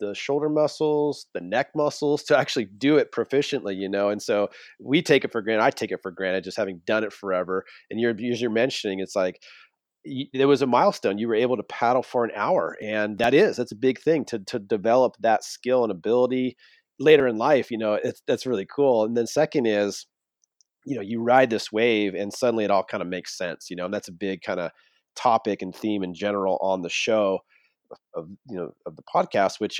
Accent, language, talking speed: American, English, 230 wpm